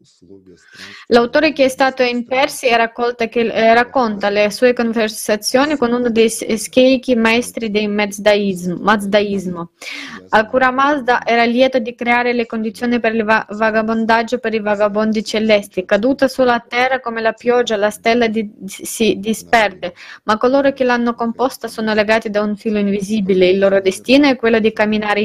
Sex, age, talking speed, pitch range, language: female, 20-39, 155 wpm, 210-240 Hz, Italian